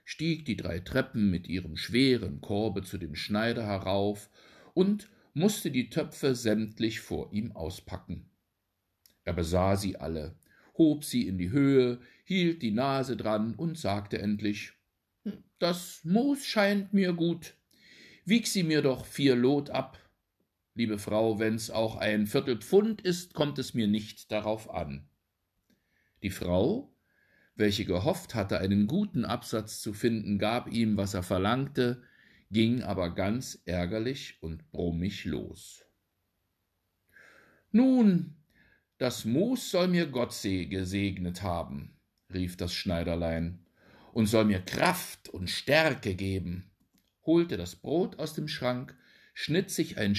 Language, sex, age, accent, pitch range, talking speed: German, male, 60-79, German, 95-135 Hz, 130 wpm